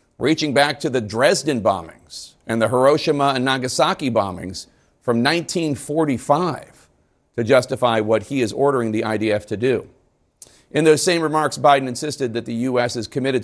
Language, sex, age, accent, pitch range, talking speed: English, male, 50-69, American, 115-150 Hz, 155 wpm